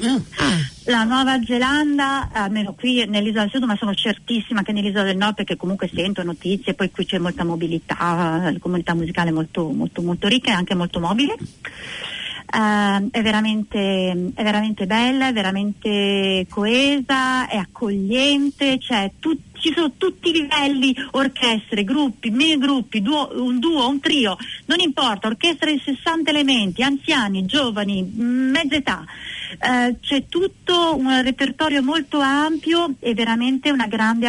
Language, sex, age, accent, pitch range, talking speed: Italian, female, 40-59, native, 190-255 Hz, 145 wpm